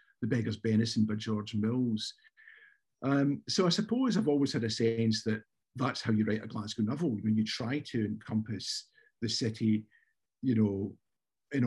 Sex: male